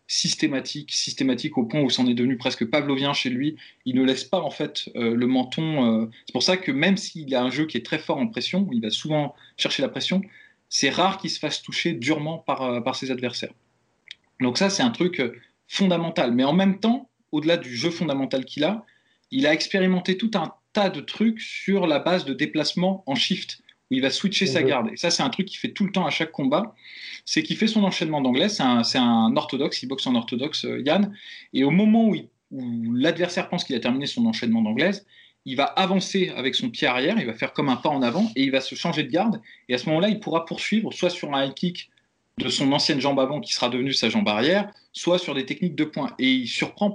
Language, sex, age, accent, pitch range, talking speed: French, male, 20-39, French, 135-200 Hz, 240 wpm